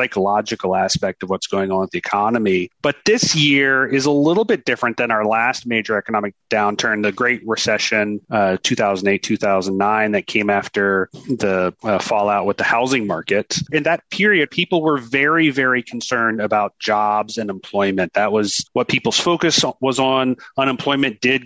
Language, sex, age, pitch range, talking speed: English, male, 30-49, 105-140 Hz, 165 wpm